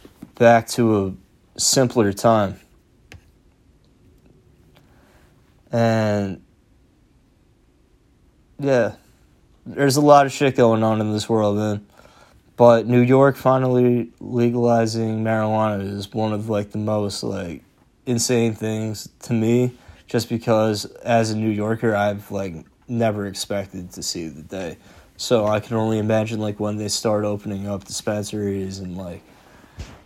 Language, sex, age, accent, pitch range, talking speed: English, male, 20-39, American, 100-115 Hz, 125 wpm